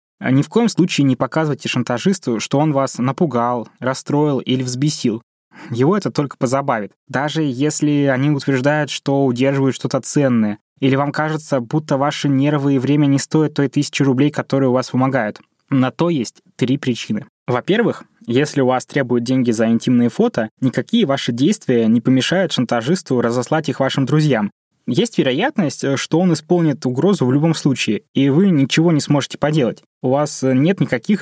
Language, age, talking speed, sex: Russian, 20-39, 165 wpm, male